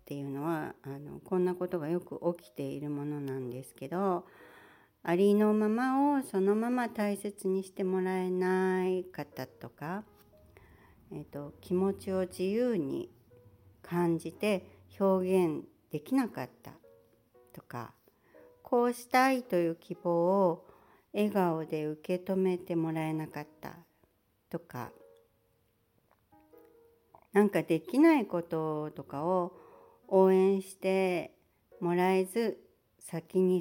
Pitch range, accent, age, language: 150-200 Hz, native, 60-79, Japanese